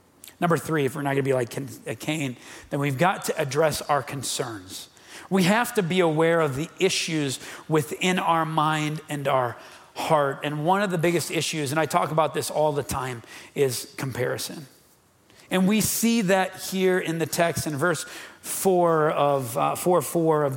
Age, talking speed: 40-59, 185 wpm